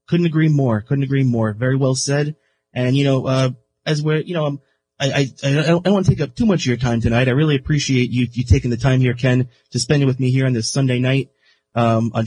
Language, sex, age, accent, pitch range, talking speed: English, male, 30-49, American, 120-145 Hz, 270 wpm